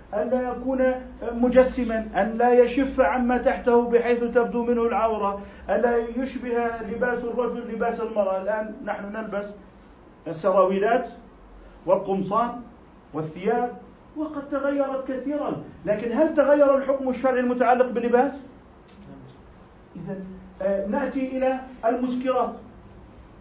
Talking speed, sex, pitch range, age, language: 105 wpm, male, 220-260 Hz, 50-69, Arabic